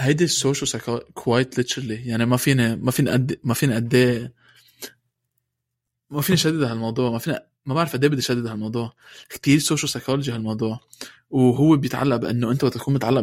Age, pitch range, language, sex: 20-39, 120-145 Hz, Arabic, male